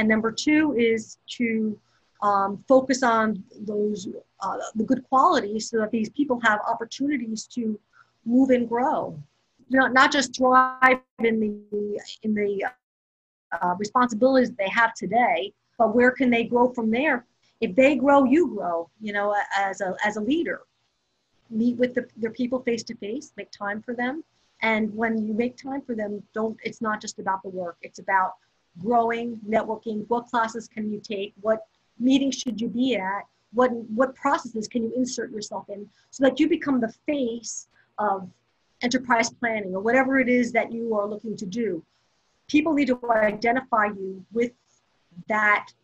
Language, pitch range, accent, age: English, 210-250 Hz, American, 50-69